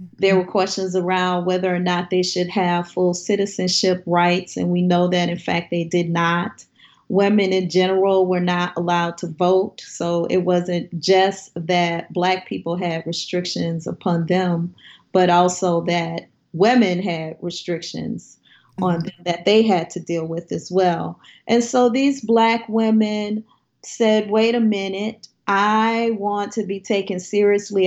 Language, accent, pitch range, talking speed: English, American, 180-210 Hz, 155 wpm